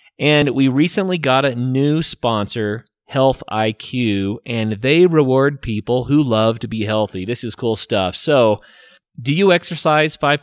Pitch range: 115-150 Hz